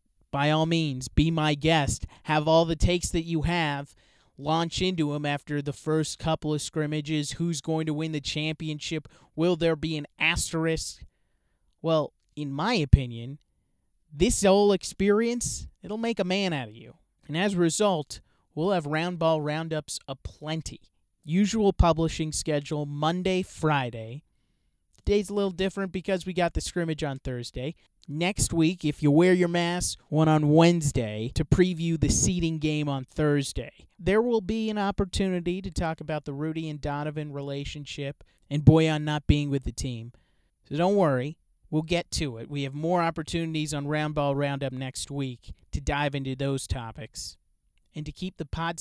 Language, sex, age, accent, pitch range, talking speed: English, male, 30-49, American, 140-170 Hz, 170 wpm